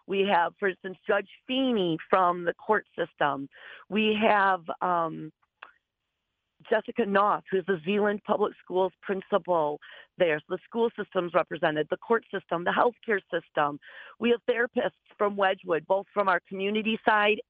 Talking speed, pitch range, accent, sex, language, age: 145 wpm, 180-220 Hz, American, female, English, 40-59